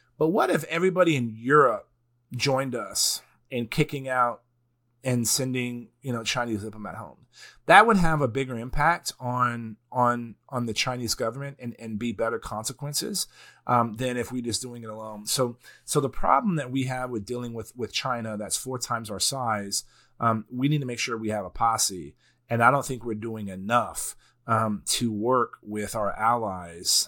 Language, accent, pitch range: English, American, 110-125 Hz